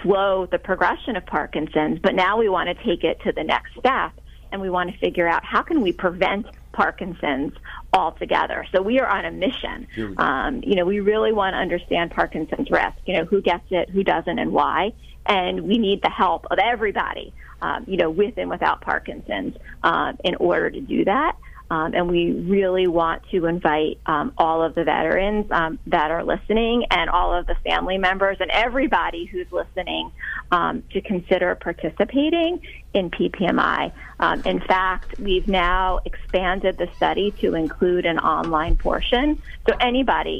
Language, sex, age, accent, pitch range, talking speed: English, female, 40-59, American, 175-210 Hz, 180 wpm